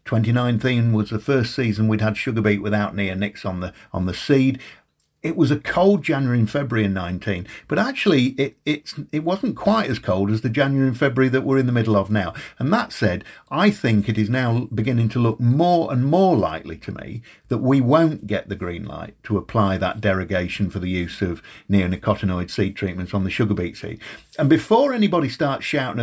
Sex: male